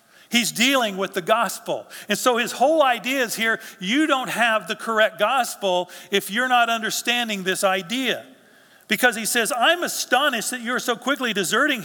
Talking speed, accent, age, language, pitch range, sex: 170 wpm, American, 50-69, English, 185-245 Hz, male